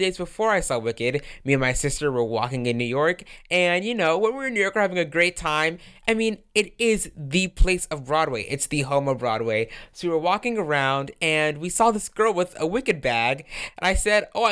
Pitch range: 135-200 Hz